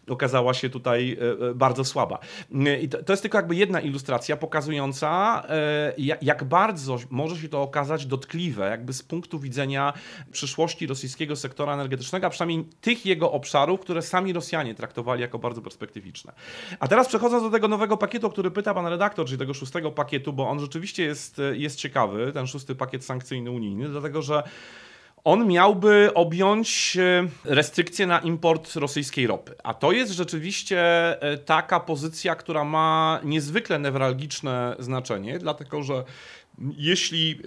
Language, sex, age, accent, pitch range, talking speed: Polish, male, 40-59, native, 135-170 Hz, 145 wpm